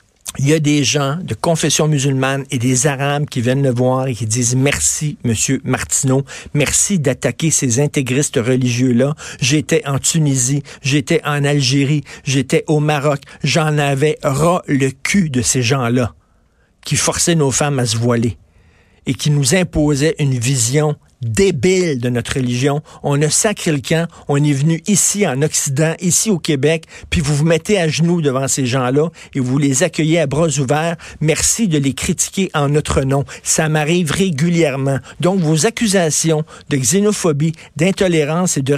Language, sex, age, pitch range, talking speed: French, male, 50-69, 135-165 Hz, 165 wpm